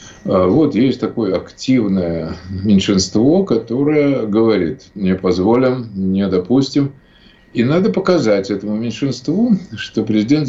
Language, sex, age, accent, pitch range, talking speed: Russian, male, 50-69, native, 95-130 Hz, 105 wpm